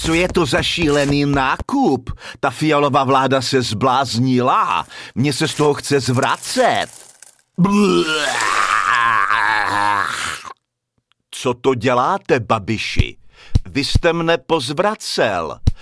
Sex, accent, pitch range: male, native, 130-170 Hz